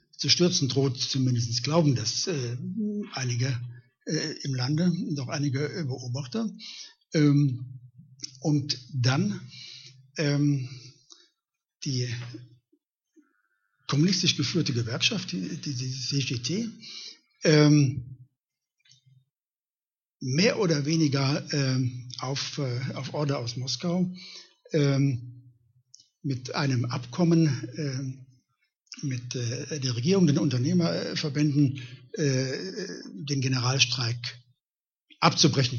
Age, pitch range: 60-79, 130-165 Hz